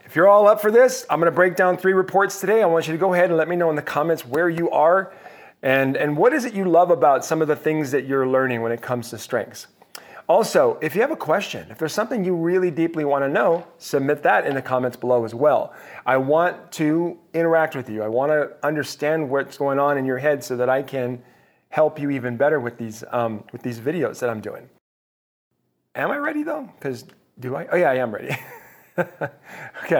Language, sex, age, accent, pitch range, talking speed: English, male, 40-59, American, 125-170 Hz, 230 wpm